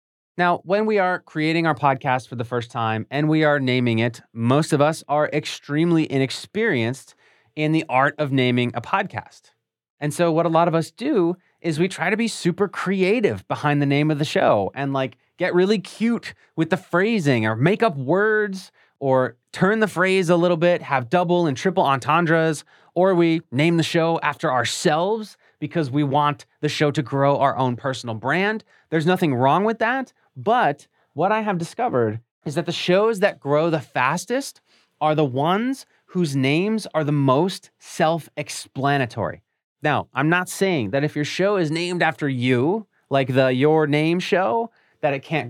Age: 30-49